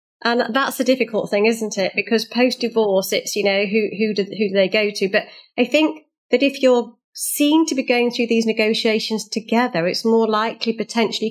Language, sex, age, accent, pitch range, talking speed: English, female, 40-59, British, 205-235 Hz, 205 wpm